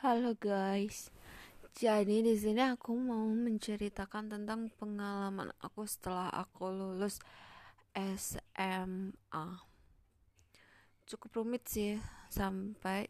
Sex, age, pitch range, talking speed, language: female, 20-39, 175-210 Hz, 85 wpm, Indonesian